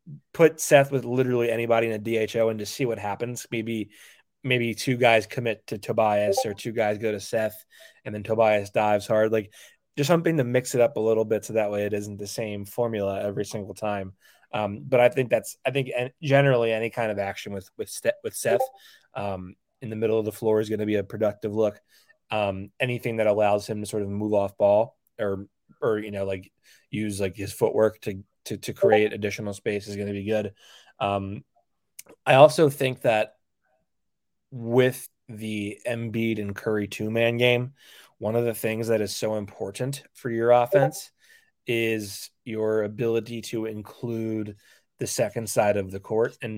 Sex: male